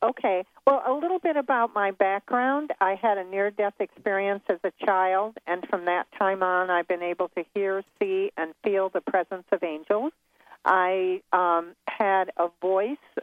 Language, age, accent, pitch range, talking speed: English, 50-69, American, 175-225 Hz, 170 wpm